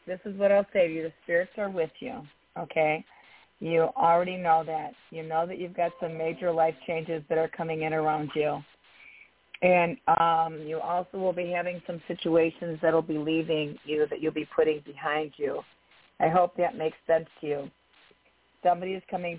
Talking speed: 190 wpm